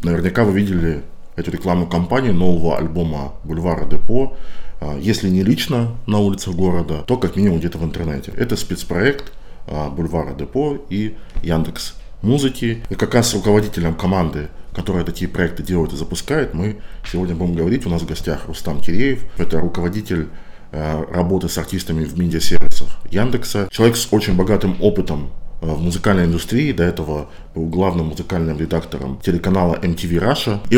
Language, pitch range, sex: Russian, 80-95 Hz, male